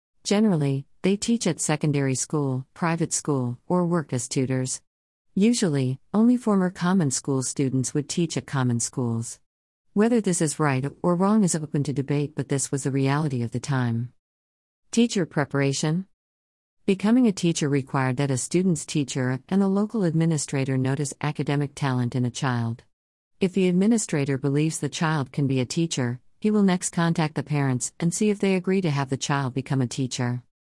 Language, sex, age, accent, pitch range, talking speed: English, female, 50-69, American, 130-175 Hz, 175 wpm